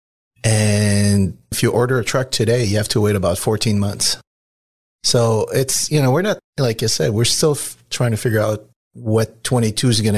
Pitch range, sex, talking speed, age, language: 105-125 Hz, male, 200 wpm, 30-49, English